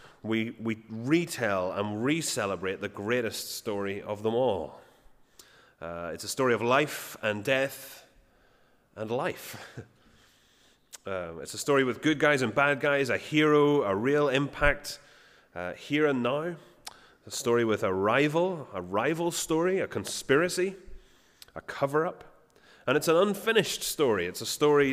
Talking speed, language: 145 wpm, English